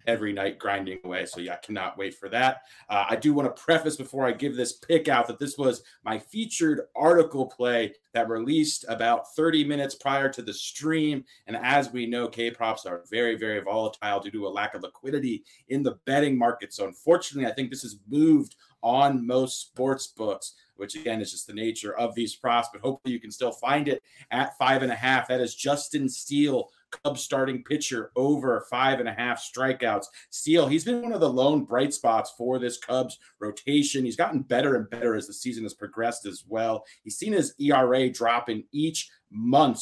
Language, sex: English, male